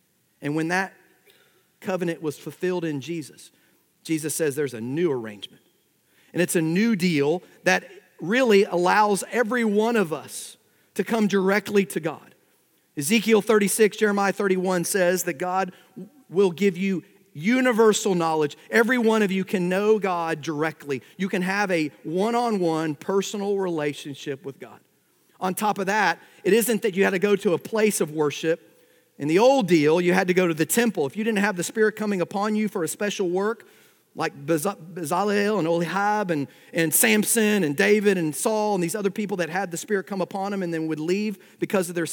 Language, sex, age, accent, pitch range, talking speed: English, male, 40-59, American, 170-215 Hz, 185 wpm